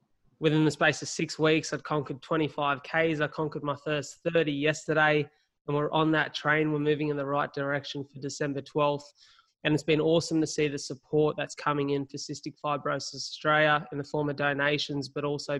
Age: 20-39